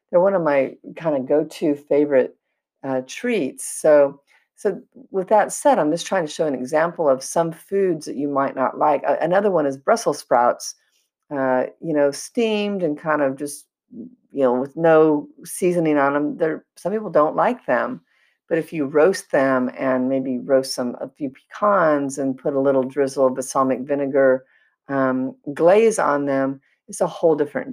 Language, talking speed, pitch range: English, 185 wpm, 135-170 Hz